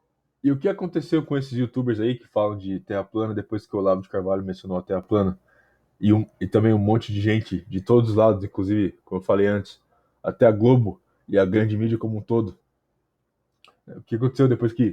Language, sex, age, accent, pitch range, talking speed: Portuguese, male, 20-39, Brazilian, 105-145 Hz, 215 wpm